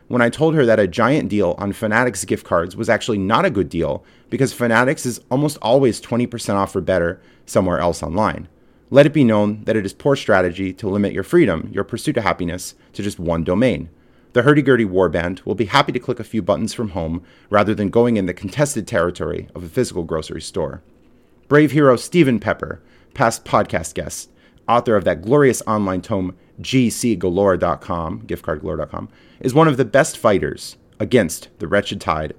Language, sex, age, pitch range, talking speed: English, male, 30-49, 95-130 Hz, 190 wpm